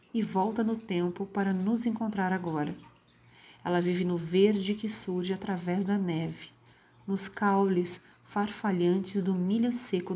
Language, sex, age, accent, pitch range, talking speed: Portuguese, female, 40-59, Brazilian, 175-205 Hz, 135 wpm